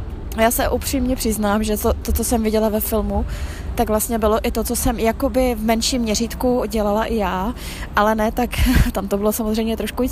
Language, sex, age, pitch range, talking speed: Czech, female, 20-39, 205-240 Hz, 210 wpm